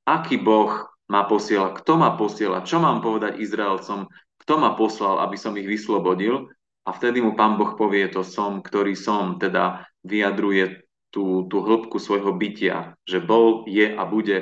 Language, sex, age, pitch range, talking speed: Slovak, male, 30-49, 95-110 Hz, 165 wpm